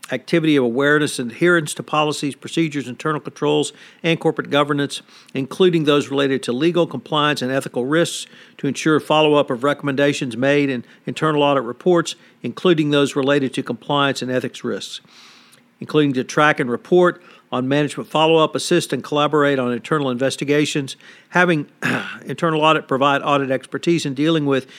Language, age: English, 50-69